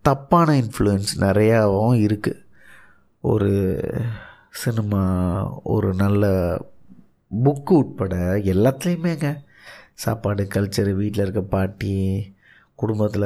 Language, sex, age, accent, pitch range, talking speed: Tamil, male, 30-49, native, 100-125 Hz, 80 wpm